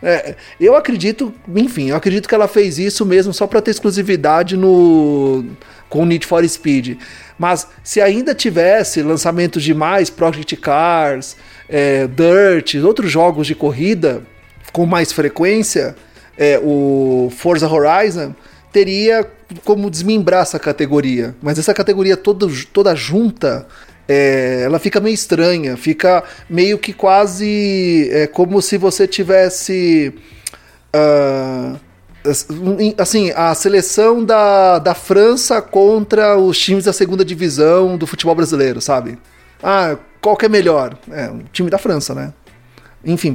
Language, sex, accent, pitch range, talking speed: Portuguese, male, Brazilian, 150-200 Hz, 135 wpm